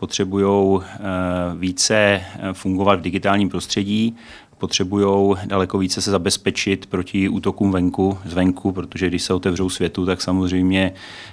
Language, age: Czech, 30-49